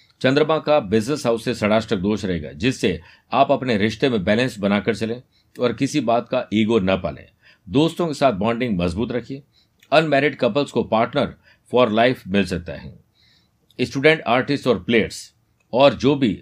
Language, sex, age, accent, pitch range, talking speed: Hindi, male, 50-69, native, 100-130 Hz, 125 wpm